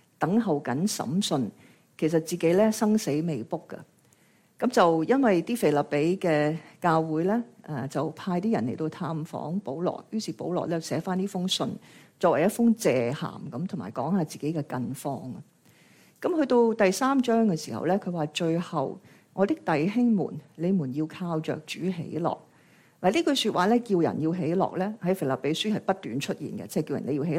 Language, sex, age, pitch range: Chinese, female, 50-69, 155-215 Hz